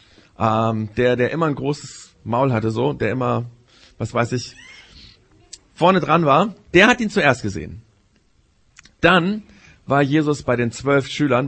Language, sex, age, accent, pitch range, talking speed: German, male, 40-59, German, 115-170 Hz, 145 wpm